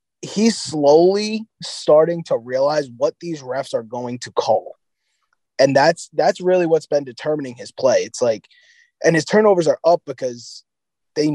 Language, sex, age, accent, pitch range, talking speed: English, male, 20-39, American, 130-205 Hz, 160 wpm